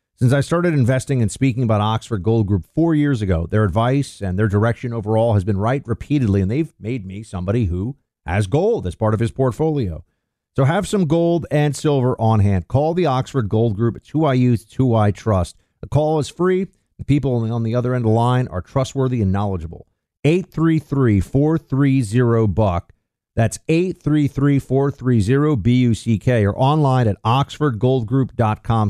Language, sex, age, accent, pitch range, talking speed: English, male, 50-69, American, 105-135 Hz, 195 wpm